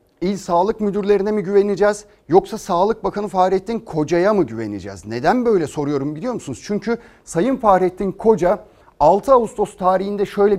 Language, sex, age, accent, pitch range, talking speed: Turkish, male, 40-59, native, 165-210 Hz, 140 wpm